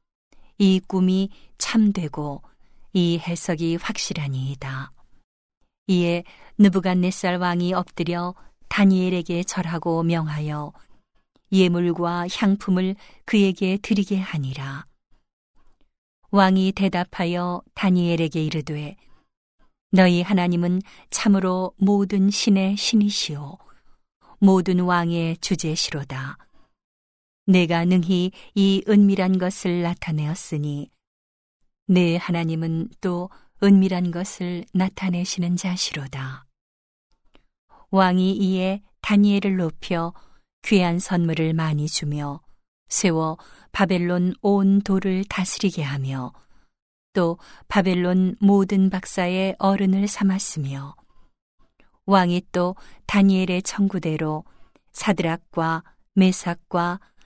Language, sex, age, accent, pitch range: Korean, female, 50-69, native, 165-195 Hz